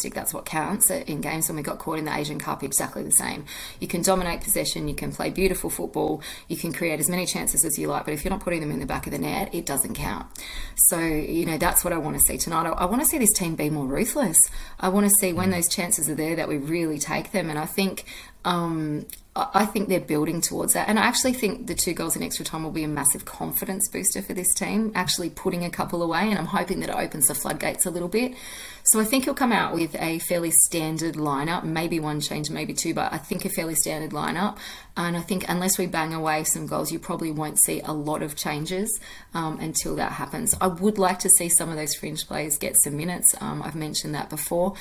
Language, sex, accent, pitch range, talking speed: English, female, Australian, 155-190 Hz, 255 wpm